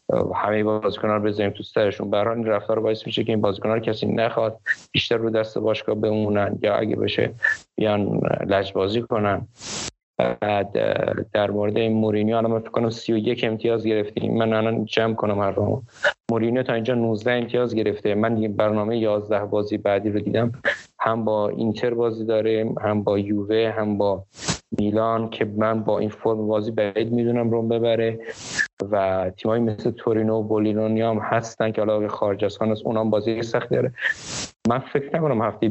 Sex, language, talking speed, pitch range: male, Persian, 170 wpm, 105-115 Hz